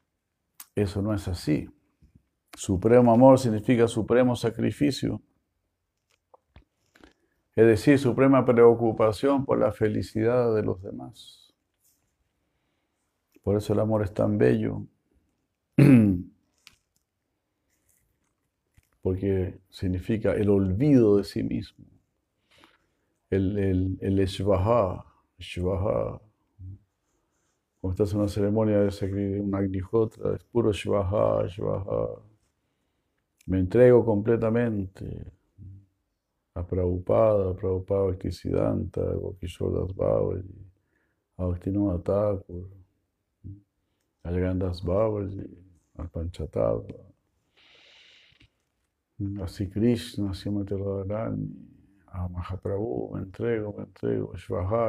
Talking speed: 85 wpm